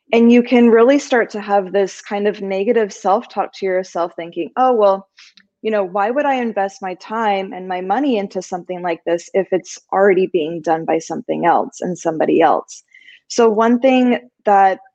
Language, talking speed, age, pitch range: English, 195 wpm, 20-39, 185-225 Hz